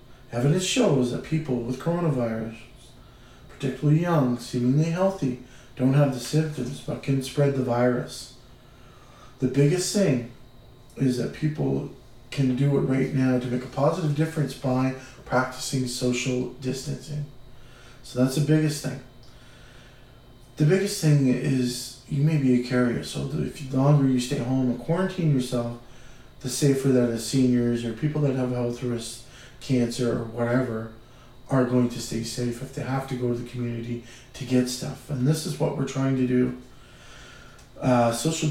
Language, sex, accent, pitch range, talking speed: English, male, American, 120-140 Hz, 160 wpm